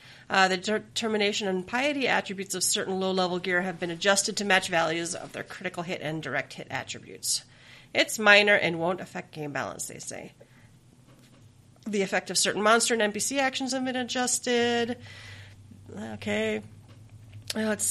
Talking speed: 155 wpm